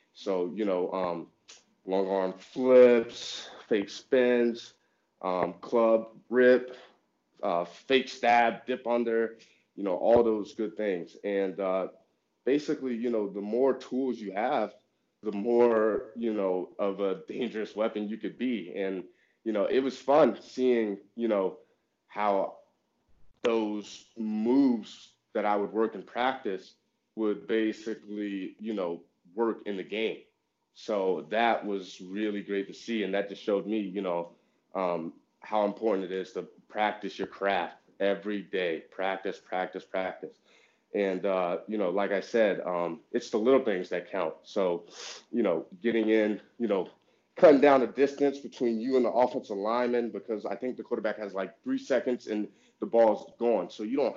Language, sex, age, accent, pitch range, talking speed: English, male, 30-49, American, 100-120 Hz, 160 wpm